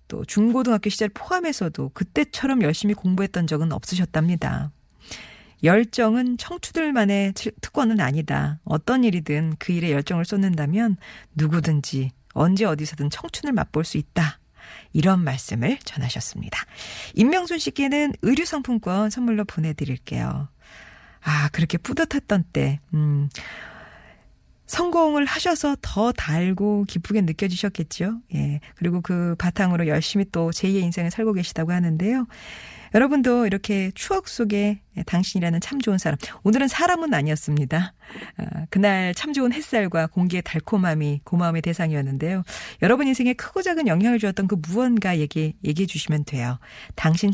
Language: Korean